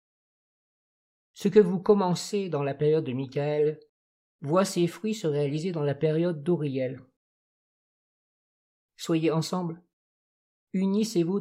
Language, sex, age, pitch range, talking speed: French, male, 50-69, 145-170 Hz, 110 wpm